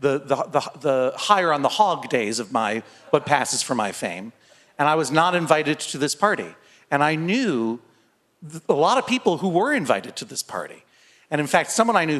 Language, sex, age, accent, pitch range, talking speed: English, male, 40-59, American, 155-225 Hz, 195 wpm